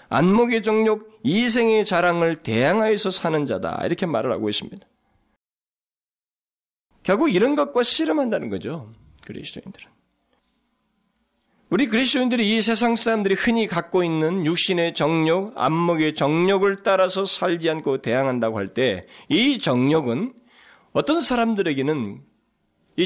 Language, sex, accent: Korean, male, native